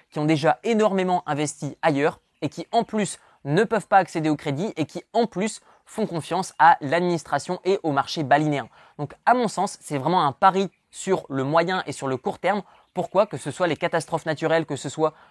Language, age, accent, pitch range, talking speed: French, 20-39, French, 150-190 Hz, 210 wpm